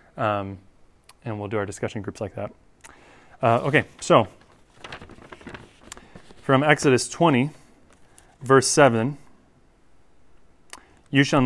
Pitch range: 105-125 Hz